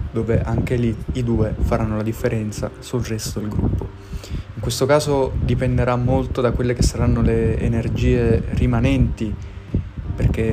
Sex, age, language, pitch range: male, 20-39, Italian, 100-120 Hz